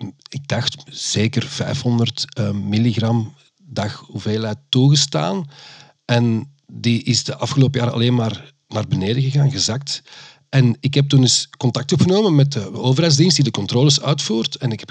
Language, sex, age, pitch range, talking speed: Dutch, male, 40-59, 115-145 Hz, 150 wpm